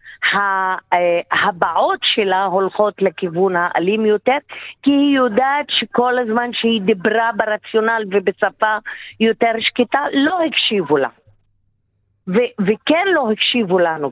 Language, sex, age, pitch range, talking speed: Hebrew, female, 50-69, 190-250 Hz, 105 wpm